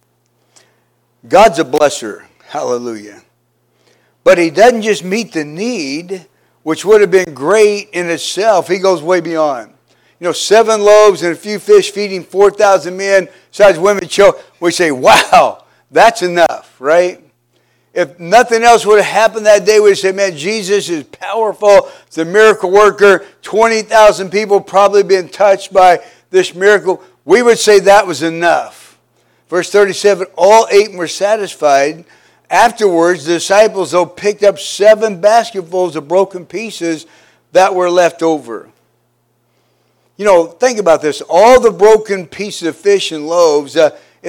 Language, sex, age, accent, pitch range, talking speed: English, male, 60-79, American, 170-210 Hz, 150 wpm